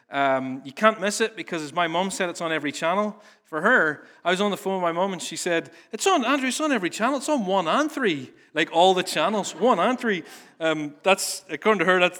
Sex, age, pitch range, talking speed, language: male, 30-49, 160-225 Hz, 255 wpm, English